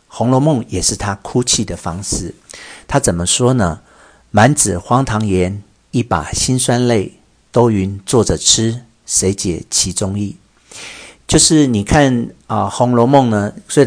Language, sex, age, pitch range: Chinese, male, 50-69, 100-125 Hz